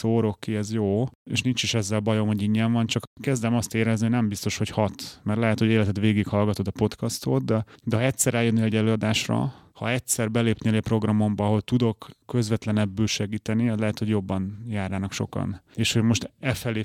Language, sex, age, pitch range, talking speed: Hungarian, male, 30-49, 105-120 Hz, 195 wpm